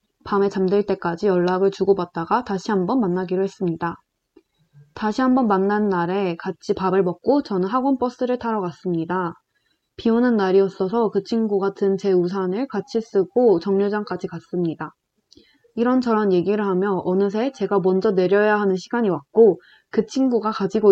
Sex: female